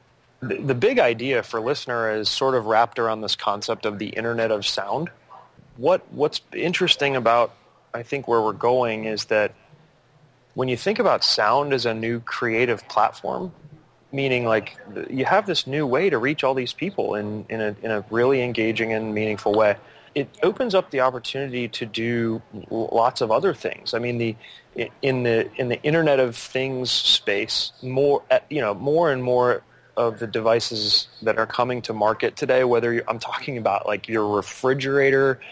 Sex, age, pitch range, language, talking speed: male, 30-49, 115-150 Hz, English, 180 wpm